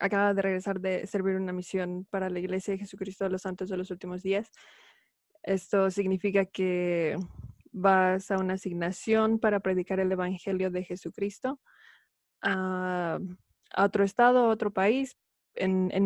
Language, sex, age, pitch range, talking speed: Spanish, female, 20-39, 185-215 Hz, 155 wpm